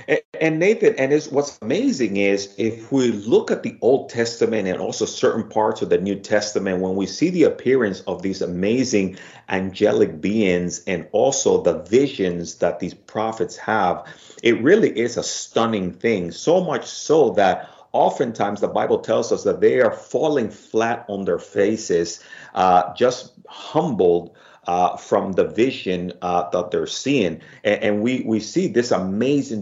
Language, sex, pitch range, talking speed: English, male, 95-120 Hz, 160 wpm